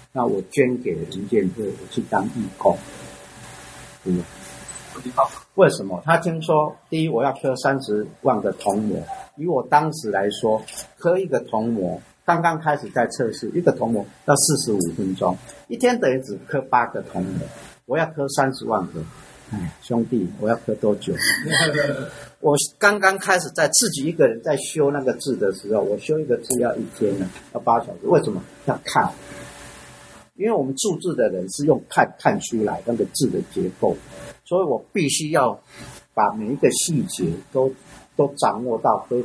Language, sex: Chinese, male